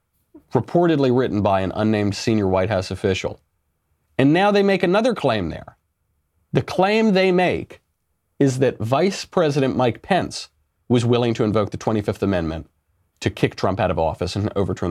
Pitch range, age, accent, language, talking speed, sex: 90-140 Hz, 30-49, American, English, 165 wpm, male